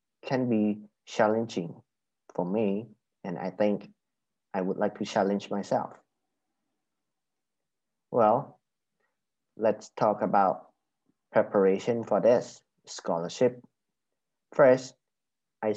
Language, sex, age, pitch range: Thai, male, 30-49, 100-120 Hz